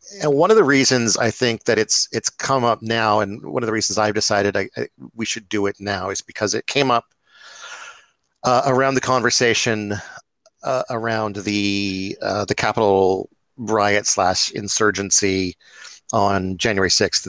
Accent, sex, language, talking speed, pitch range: American, male, English, 165 wpm, 100-115 Hz